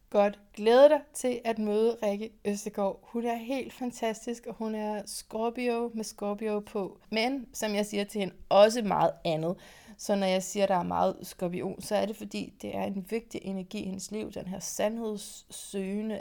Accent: native